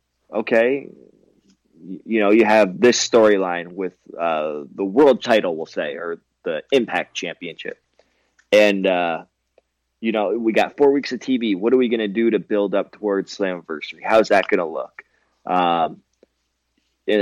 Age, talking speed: 20-39, 160 wpm